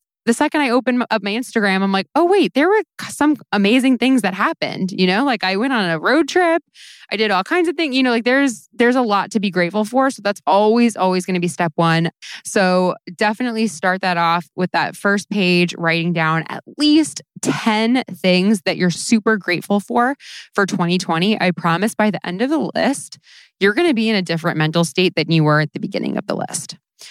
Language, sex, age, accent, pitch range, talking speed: English, female, 20-39, American, 170-235 Hz, 225 wpm